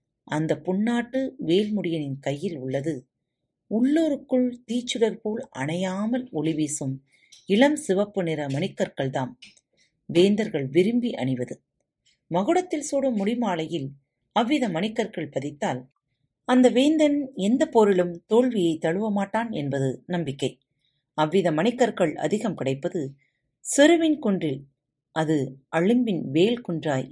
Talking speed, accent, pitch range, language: 95 wpm, native, 145-230 Hz, Tamil